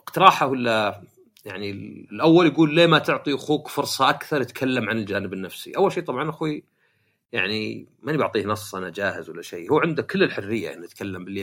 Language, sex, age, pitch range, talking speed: Arabic, male, 40-59, 110-155 Hz, 185 wpm